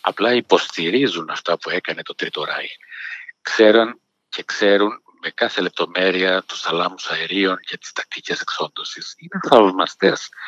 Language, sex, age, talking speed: Greek, male, 50-69, 130 wpm